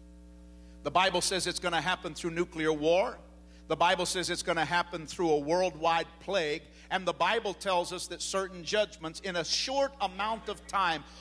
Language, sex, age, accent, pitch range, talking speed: English, male, 50-69, American, 155-225 Hz, 185 wpm